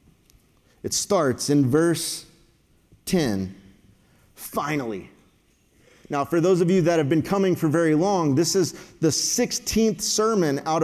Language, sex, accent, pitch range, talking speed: English, male, American, 175-220 Hz, 135 wpm